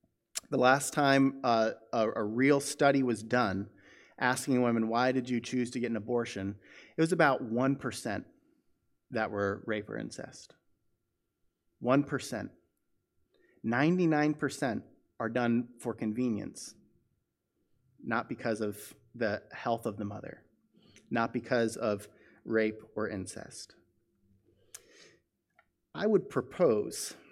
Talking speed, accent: 115 wpm, American